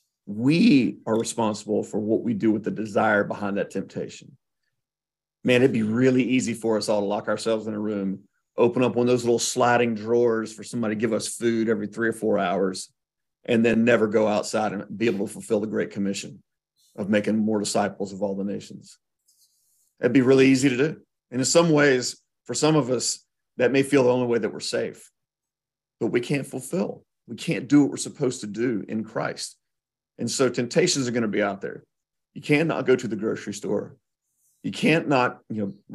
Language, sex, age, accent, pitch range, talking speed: English, male, 40-59, American, 110-135 Hz, 210 wpm